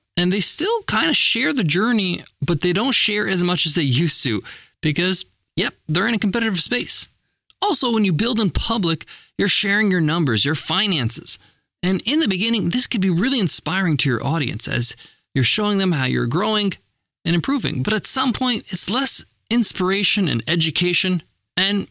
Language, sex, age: English, male, 20-39